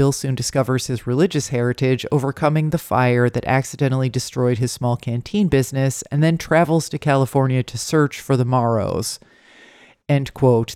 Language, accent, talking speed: English, American, 155 wpm